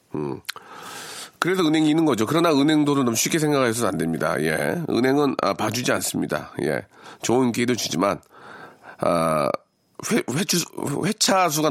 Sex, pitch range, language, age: male, 95-155 Hz, Korean, 40-59